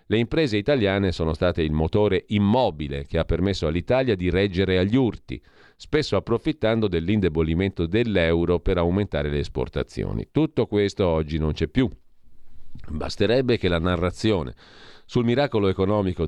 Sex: male